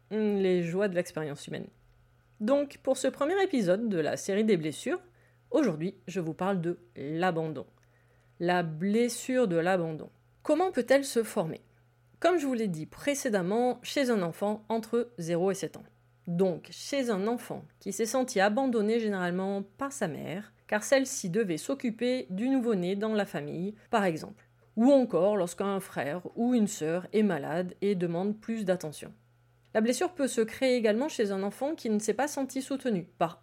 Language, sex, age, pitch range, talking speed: French, female, 30-49, 160-235 Hz, 170 wpm